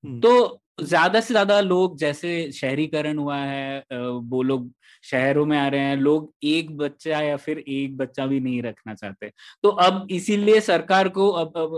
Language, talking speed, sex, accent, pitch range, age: Hindi, 170 wpm, male, native, 140-180 Hz, 20-39